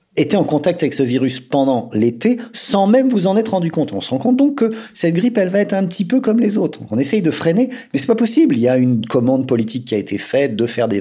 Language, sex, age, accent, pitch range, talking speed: French, male, 40-59, French, 105-170 Hz, 290 wpm